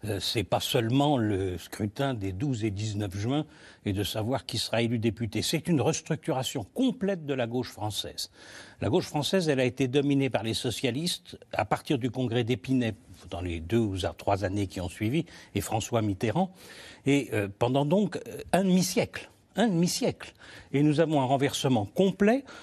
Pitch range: 115-185 Hz